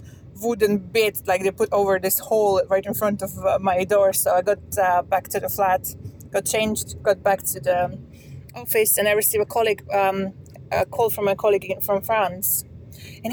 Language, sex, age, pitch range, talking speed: English, female, 20-39, 185-235 Hz, 200 wpm